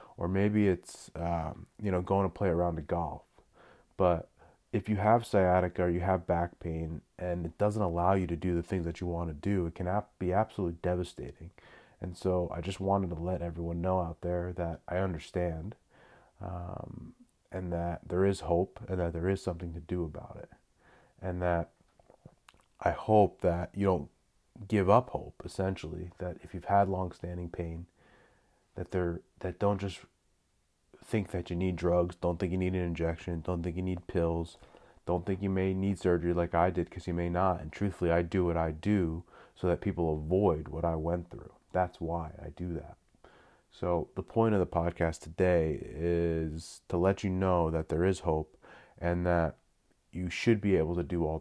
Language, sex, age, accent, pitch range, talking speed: English, male, 30-49, American, 85-95 Hz, 195 wpm